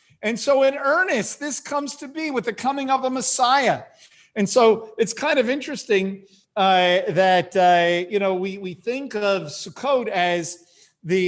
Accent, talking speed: American, 170 wpm